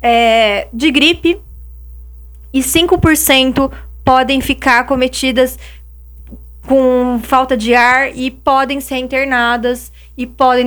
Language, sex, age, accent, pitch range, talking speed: Portuguese, female, 20-39, Brazilian, 225-300 Hz, 100 wpm